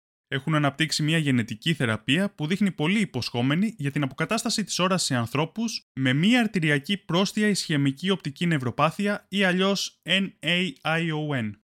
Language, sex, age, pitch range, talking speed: Greek, male, 20-39, 125-195 Hz, 135 wpm